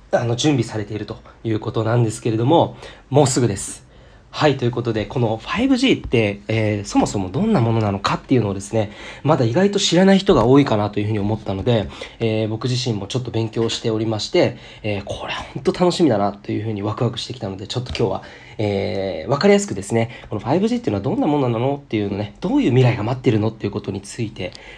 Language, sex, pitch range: Japanese, male, 105-135 Hz